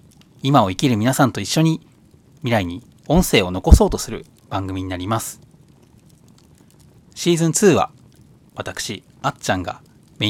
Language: Japanese